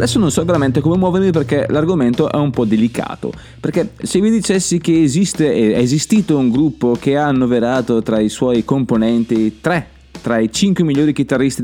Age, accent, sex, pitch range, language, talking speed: 20-39, native, male, 120-175 Hz, Italian, 180 wpm